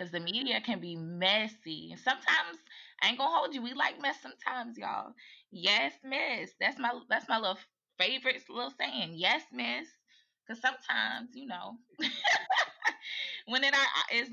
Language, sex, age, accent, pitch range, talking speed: English, female, 20-39, American, 165-235 Hz, 150 wpm